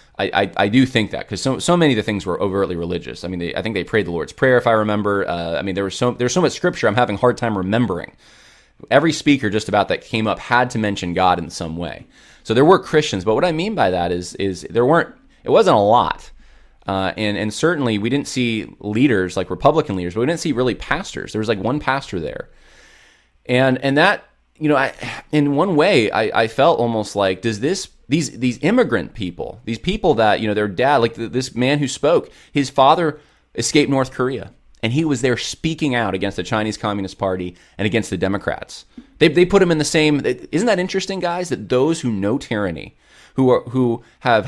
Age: 20-39